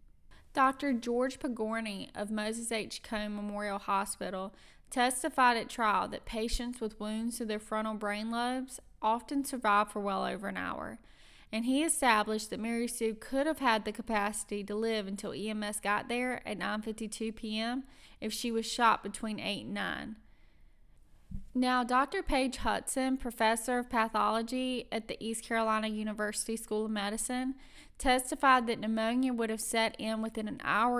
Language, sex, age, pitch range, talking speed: English, female, 20-39, 210-245 Hz, 155 wpm